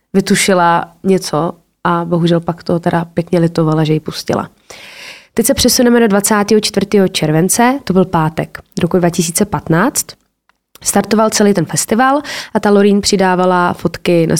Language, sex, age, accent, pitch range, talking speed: Czech, female, 20-39, native, 170-215 Hz, 140 wpm